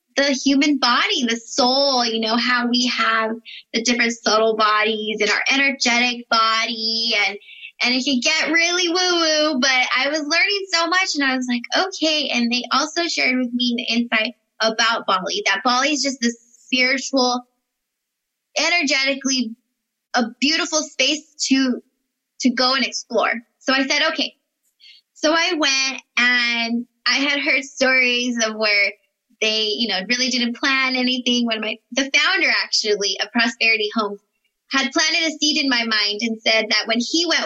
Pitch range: 230-295 Hz